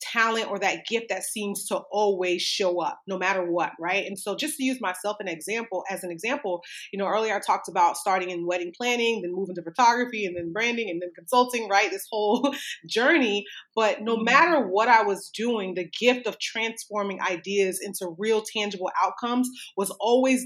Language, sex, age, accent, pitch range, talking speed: English, female, 30-49, American, 185-235 Hz, 195 wpm